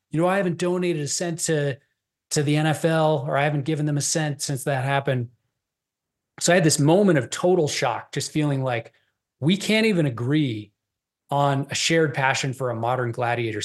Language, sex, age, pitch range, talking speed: English, male, 30-49, 130-160 Hz, 195 wpm